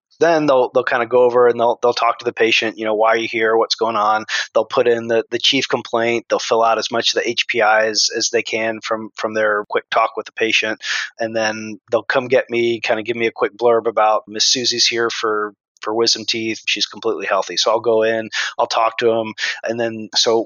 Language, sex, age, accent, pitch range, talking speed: English, male, 20-39, American, 110-120 Hz, 245 wpm